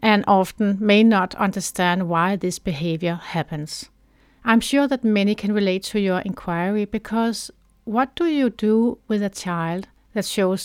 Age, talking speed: 60-79, 160 wpm